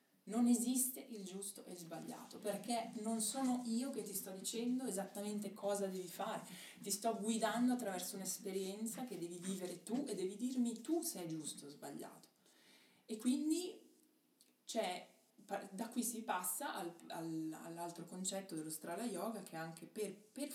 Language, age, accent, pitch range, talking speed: Italian, 20-39, native, 165-220 Hz, 165 wpm